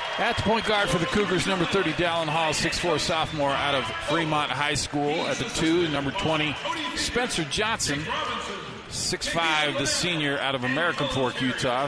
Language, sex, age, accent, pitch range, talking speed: English, male, 40-59, American, 140-175 Hz, 165 wpm